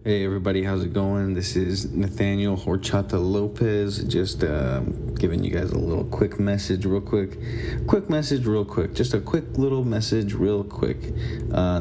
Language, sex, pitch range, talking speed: English, male, 95-115 Hz, 165 wpm